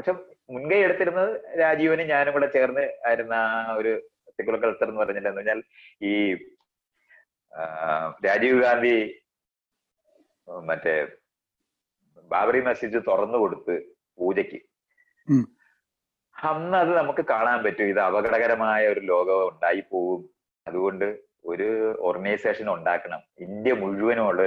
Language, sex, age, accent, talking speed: Malayalam, male, 30-49, native, 100 wpm